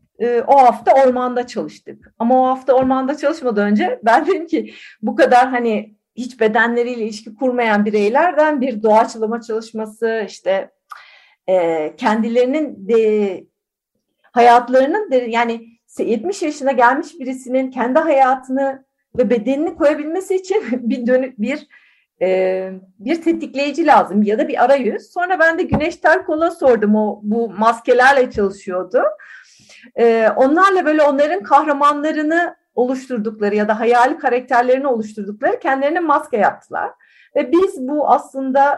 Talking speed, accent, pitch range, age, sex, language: 125 wpm, native, 220-280 Hz, 50-69, female, Turkish